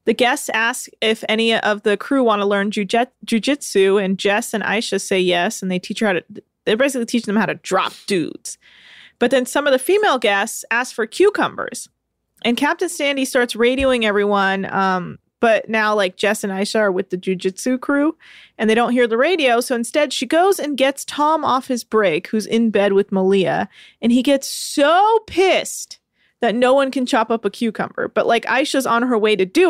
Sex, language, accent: female, English, American